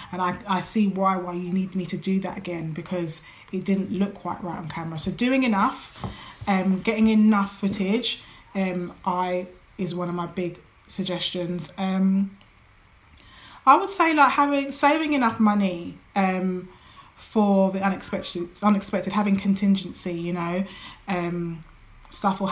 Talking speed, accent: 150 wpm, British